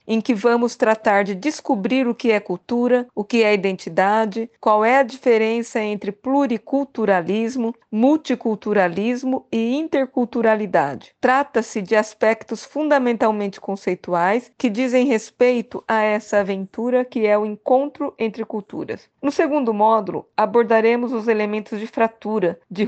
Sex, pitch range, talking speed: female, 215-255 Hz, 130 wpm